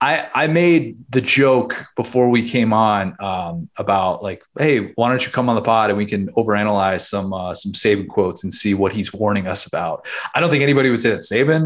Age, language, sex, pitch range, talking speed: 20-39, English, male, 110-150 Hz, 225 wpm